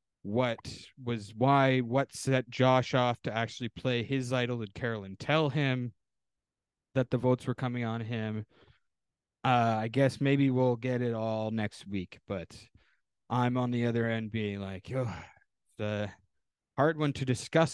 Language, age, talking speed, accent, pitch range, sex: English, 20-39, 160 wpm, American, 100-130 Hz, male